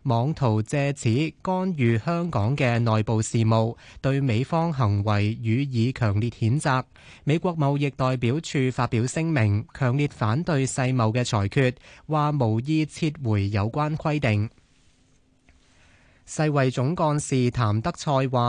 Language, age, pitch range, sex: Chinese, 20-39, 115-150 Hz, male